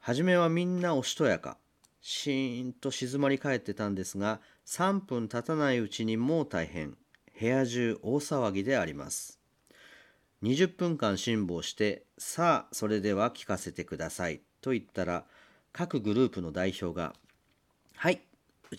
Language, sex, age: Japanese, male, 40-59